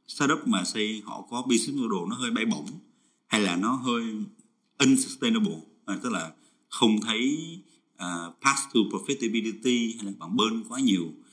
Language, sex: Vietnamese, male